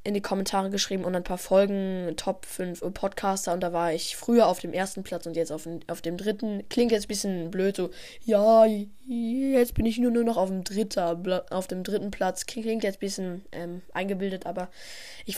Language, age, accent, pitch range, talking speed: German, 10-29, German, 180-225 Hz, 200 wpm